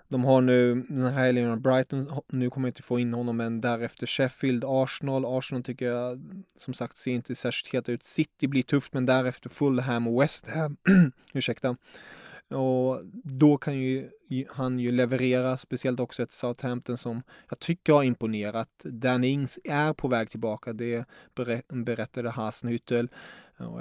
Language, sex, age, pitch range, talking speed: English, male, 20-39, 120-130 Hz, 155 wpm